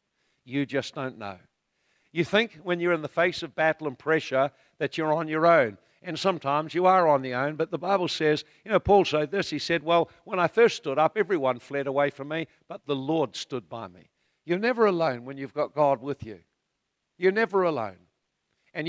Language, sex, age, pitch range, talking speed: English, male, 60-79, 130-170 Hz, 215 wpm